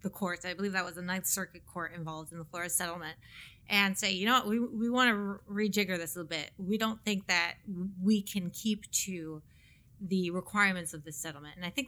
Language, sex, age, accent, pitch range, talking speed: English, female, 30-49, American, 180-230 Hz, 225 wpm